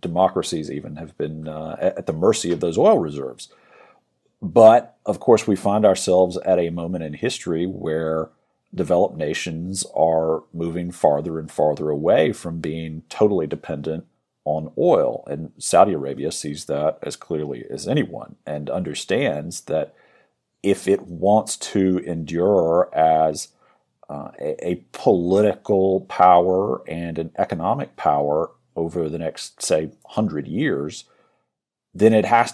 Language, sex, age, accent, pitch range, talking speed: English, male, 40-59, American, 80-95 Hz, 135 wpm